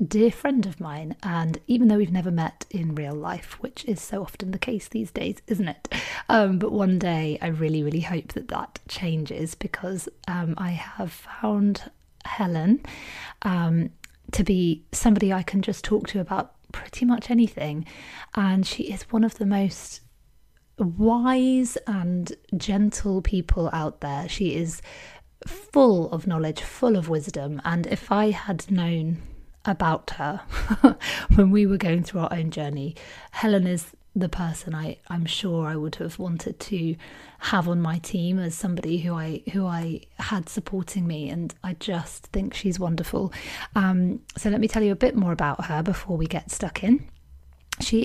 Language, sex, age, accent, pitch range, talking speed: English, female, 30-49, British, 165-210 Hz, 170 wpm